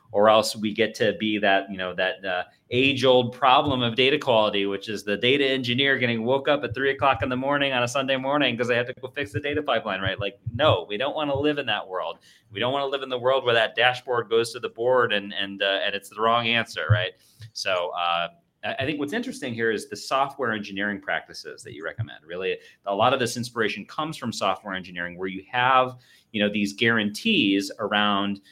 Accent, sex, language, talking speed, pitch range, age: American, male, English, 235 wpm, 100-135 Hz, 30-49